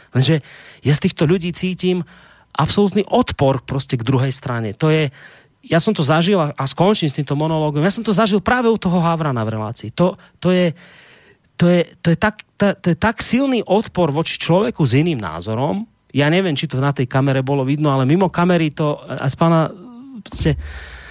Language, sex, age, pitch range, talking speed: Slovak, male, 30-49, 135-185 Hz, 190 wpm